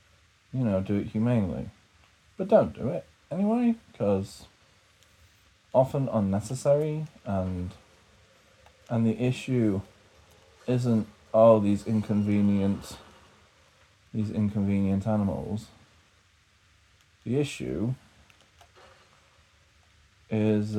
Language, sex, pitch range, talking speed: English, male, 95-120 Hz, 80 wpm